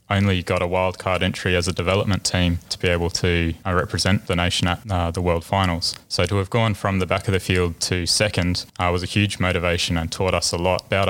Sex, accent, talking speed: male, Australian, 250 wpm